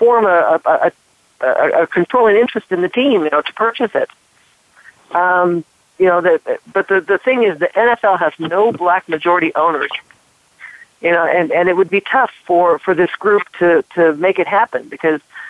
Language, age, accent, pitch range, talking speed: English, 50-69, American, 165-205 Hz, 185 wpm